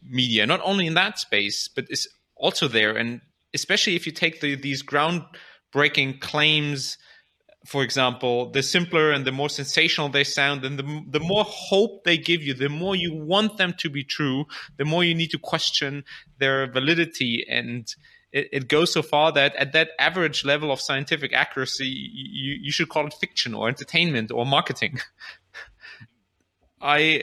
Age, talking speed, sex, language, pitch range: 30-49, 170 wpm, male, English, 120-150 Hz